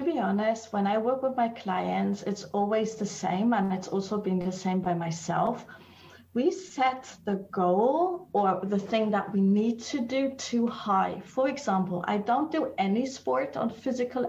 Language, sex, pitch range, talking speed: English, female, 205-255 Hz, 180 wpm